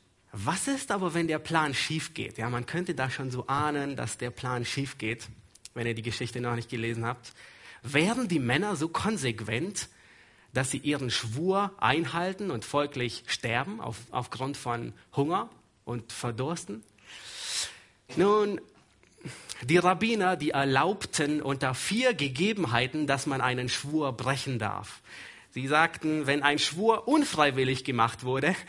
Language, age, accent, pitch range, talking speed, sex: German, 30-49, German, 120-170 Hz, 145 wpm, male